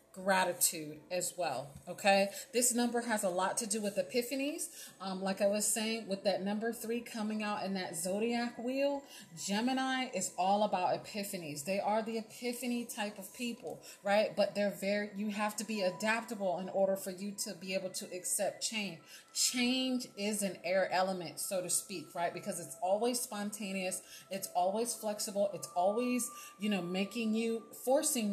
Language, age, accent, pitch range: English, 30-49, American, 190-230 Hz